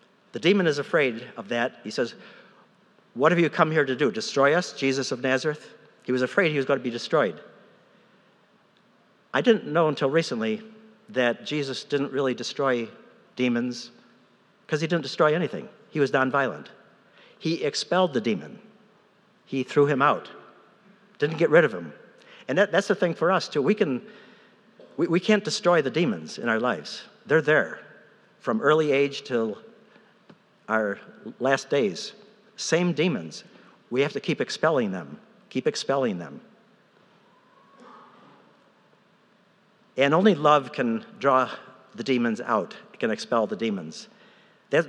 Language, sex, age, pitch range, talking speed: English, male, 60-79, 135-215 Hz, 150 wpm